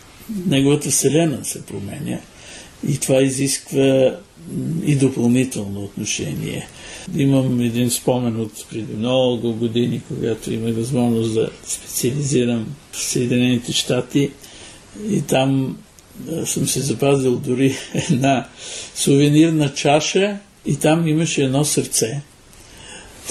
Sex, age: male, 60-79